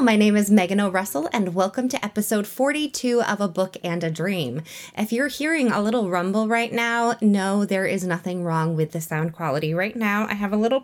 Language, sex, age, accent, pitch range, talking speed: English, female, 20-39, American, 175-240 Hz, 215 wpm